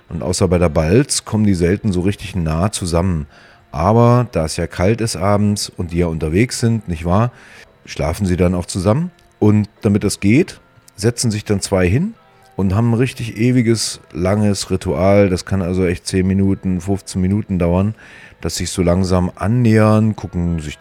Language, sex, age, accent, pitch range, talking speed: German, male, 40-59, German, 90-115 Hz, 185 wpm